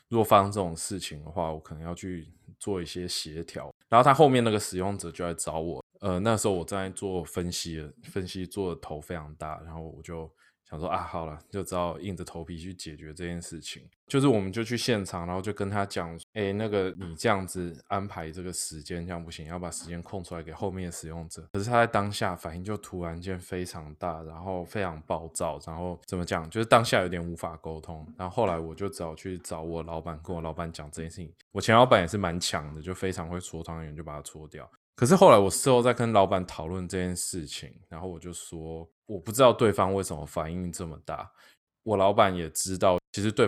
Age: 20-39